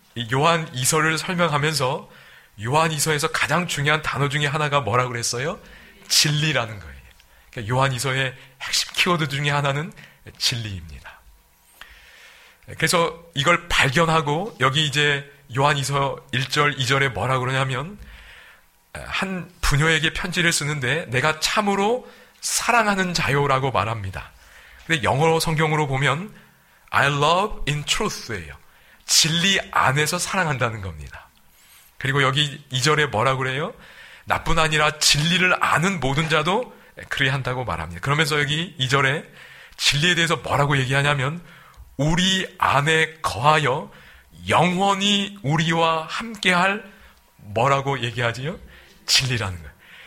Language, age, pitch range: Korean, 40-59, 130-170 Hz